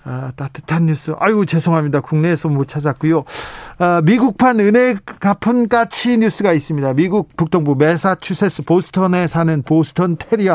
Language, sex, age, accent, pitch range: Korean, male, 40-59, native, 140-195 Hz